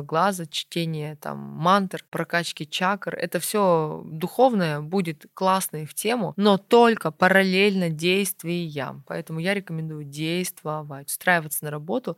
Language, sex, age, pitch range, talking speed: Russian, female, 20-39, 155-185 Hz, 125 wpm